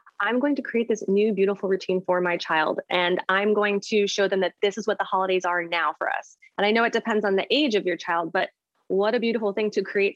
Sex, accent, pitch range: female, American, 185-235 Hz